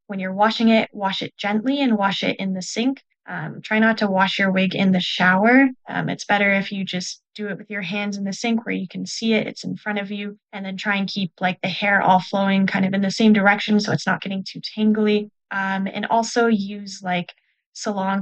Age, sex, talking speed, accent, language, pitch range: 10-29, female, 245 wpm, American, English, 190-215 Hz